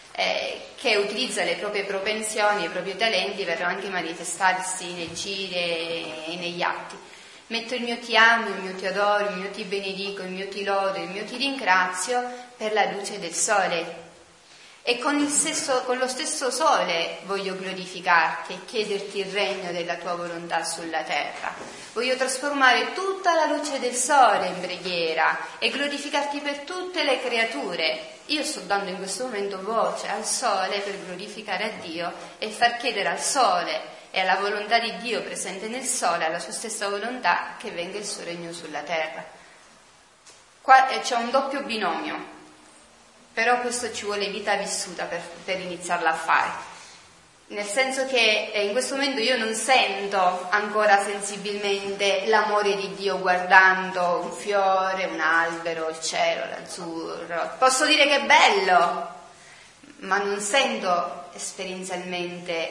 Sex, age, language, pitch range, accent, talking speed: female, 30-49, Italian, 175-230 Hz, native, 150 wpm